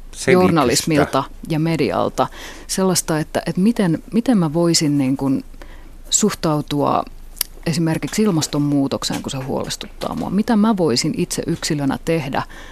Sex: female